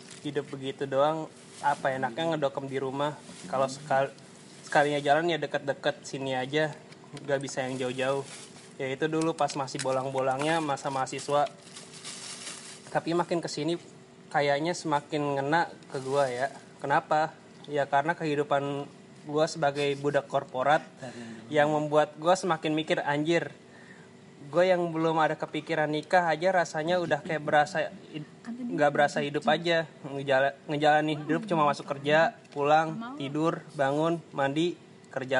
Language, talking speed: Indonesian, 130 wpm